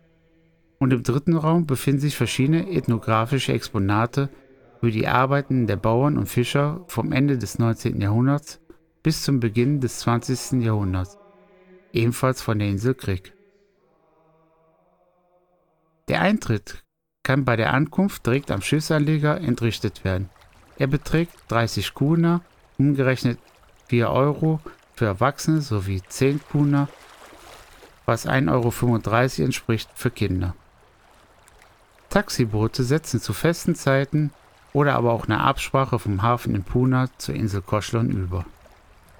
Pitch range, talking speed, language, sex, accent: 110-150 Hz, 120 wpm, German, male, German